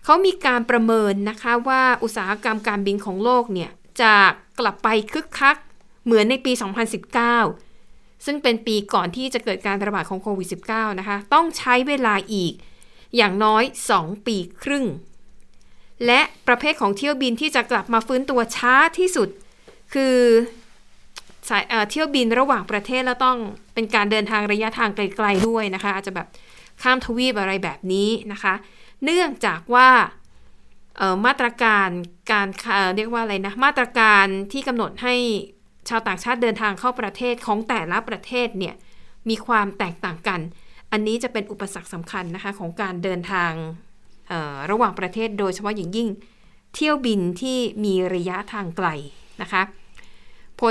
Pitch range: 200-245 Hz